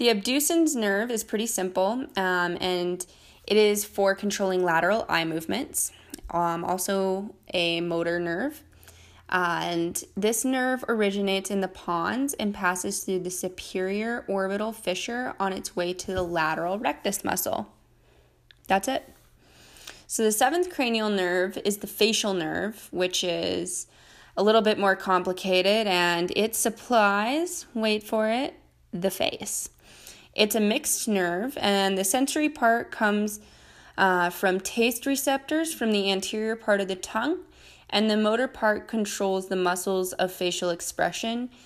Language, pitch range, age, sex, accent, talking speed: English, 180-220 Hz, 20-39, female, American, 145 wpm